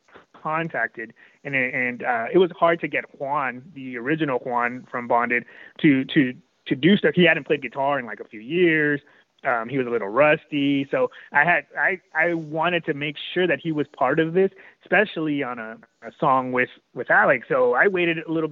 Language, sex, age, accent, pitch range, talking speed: English, male, 30-49, American, 135-165 Hz, 205 wpm